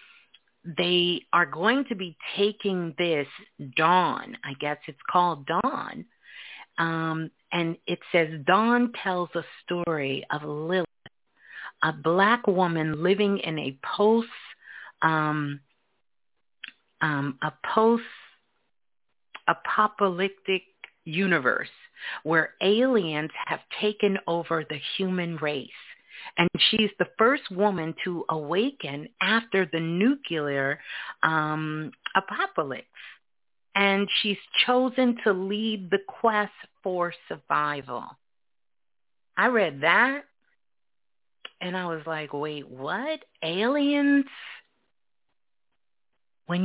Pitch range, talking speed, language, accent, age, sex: 160-220 Hz, 95 wpm, English, American, 40-59, female